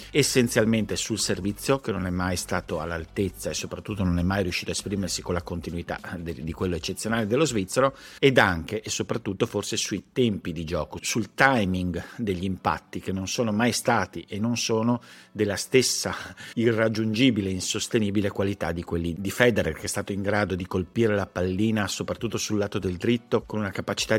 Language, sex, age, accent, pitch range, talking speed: Italian, male, 50-69, native, 95-115 Hz, 180 wpm